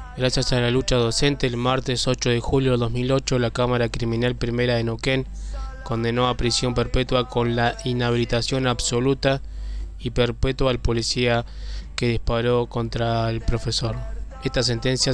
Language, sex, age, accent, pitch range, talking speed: Spanish, male, 20-39, Argentinian, 120-130 Hz, 145 wpm